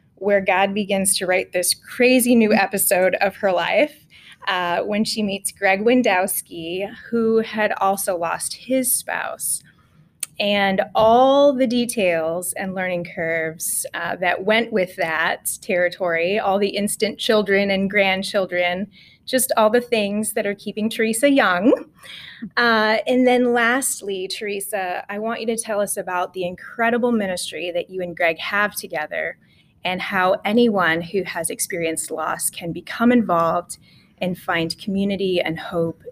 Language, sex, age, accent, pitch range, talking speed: English, female, 20-39, American, 180-225 Hz, 145 wpm